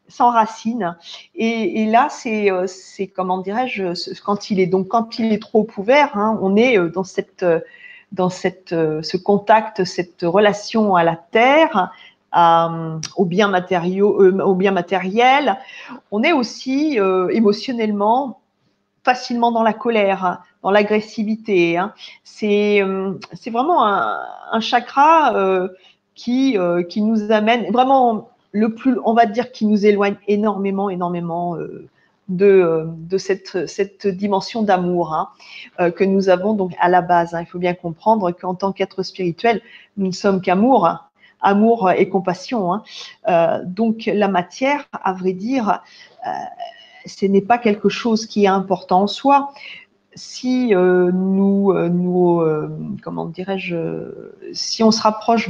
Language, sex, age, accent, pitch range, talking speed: French, female, 40-59, French, 185-225 Hz, 145 wpm